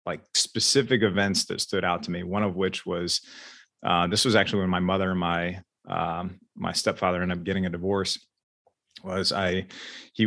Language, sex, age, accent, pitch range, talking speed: English, male, 30-49, American, 95-110 Hz, 185 wpm